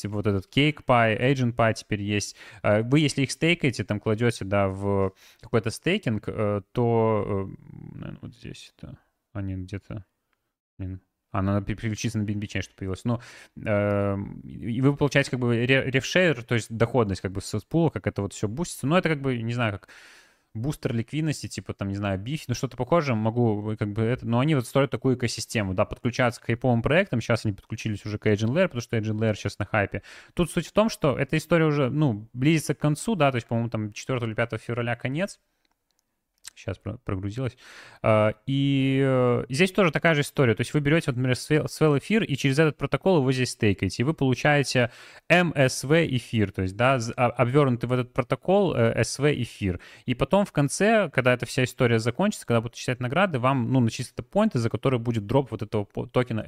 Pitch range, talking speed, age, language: 110-140 Hz, 190 wpm, 20-39, Russian